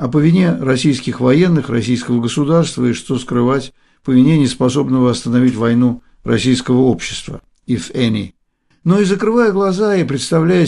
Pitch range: 125-160 Hz